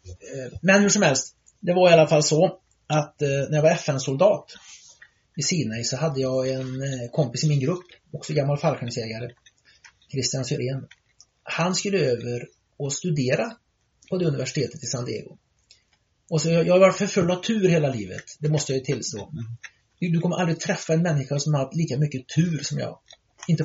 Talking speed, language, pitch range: 185 wpm, Swedish, 130-170 Hz